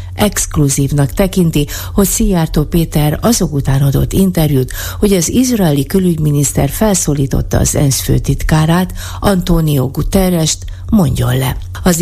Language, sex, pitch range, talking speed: Hungarian, female, 125-175 Hz, 110 wpm